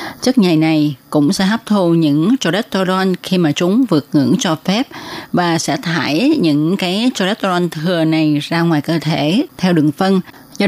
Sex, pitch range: female, 155-220 Hz